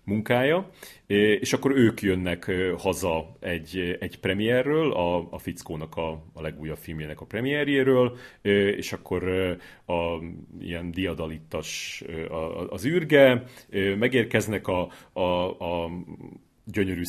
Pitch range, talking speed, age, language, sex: 85-100 Hz, 110 wpm, 30-49, Hungarian, male